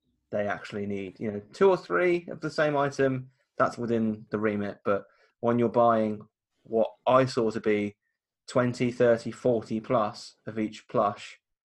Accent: British